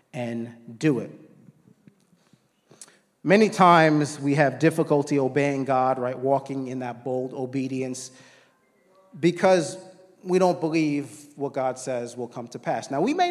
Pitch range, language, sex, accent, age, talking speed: 140-185 Hz, English, male, American, 40-59, 135 wpm